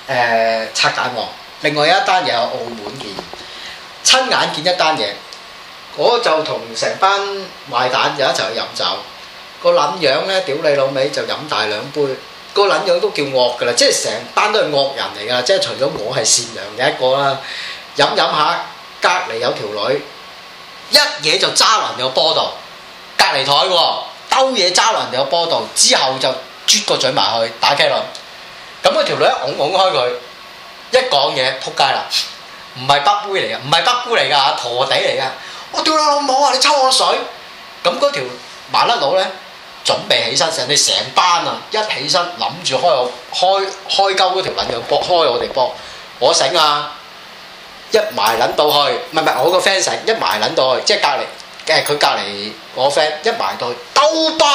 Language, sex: Chinese, male